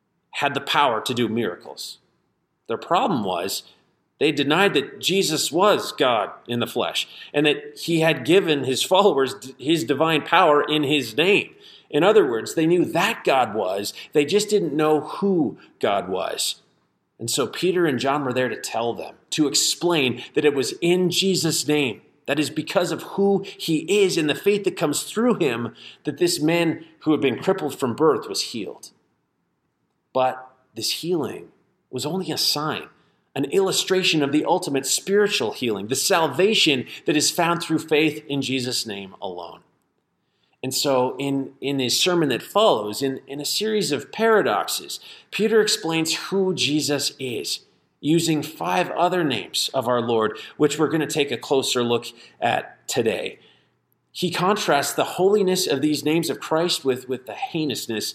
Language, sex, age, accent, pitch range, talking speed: English, male, 30-49, American, 135-180 Hz, 170 wpm